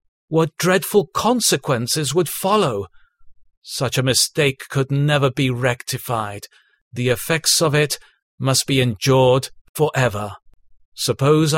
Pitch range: 120-155 Hz